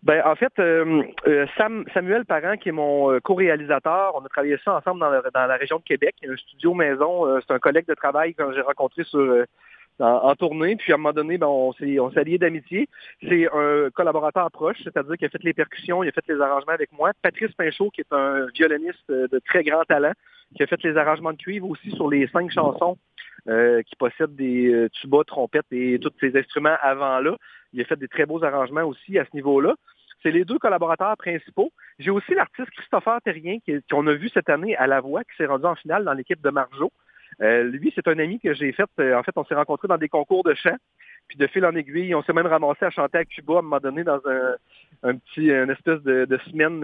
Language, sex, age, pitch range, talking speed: French, male, 40-59, 140-195 Hz, 235 wpm